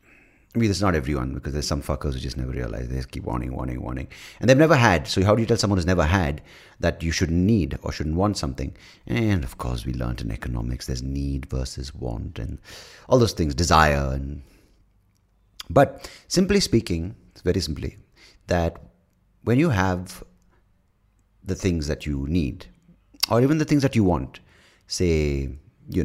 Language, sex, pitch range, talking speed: English, male, 70-100 Hz, 190 wpm